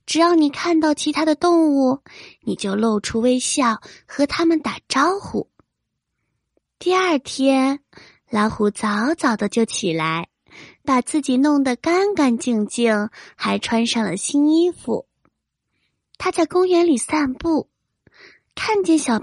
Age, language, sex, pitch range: 20-39, Chinese, female, 220-310 Hz